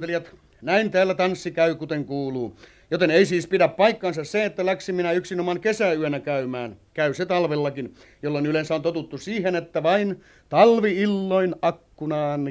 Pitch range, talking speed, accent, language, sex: 150-200 Hz, 150 wpm, native, Finnish, male